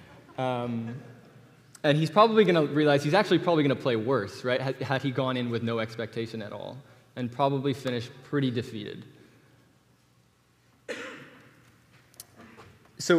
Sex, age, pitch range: male, 20-39, 120-145 Hz